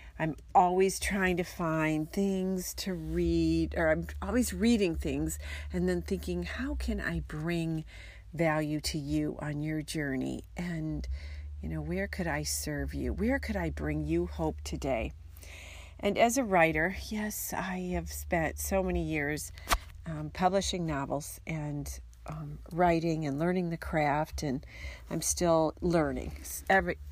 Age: 40-59